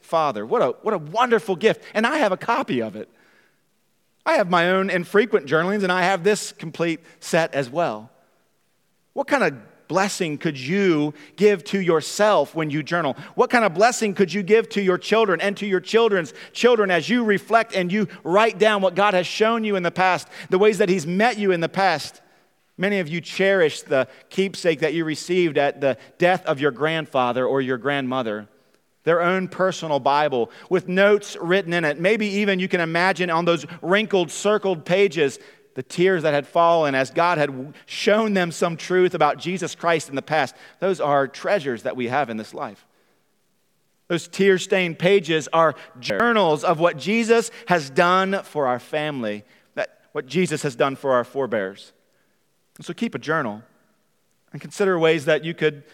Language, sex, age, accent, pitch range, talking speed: English, male, 40-59, American, 155-200 Hz, 185 wpm